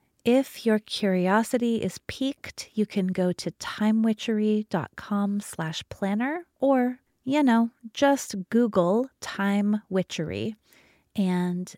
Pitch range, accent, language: 175-220 Hz, American, English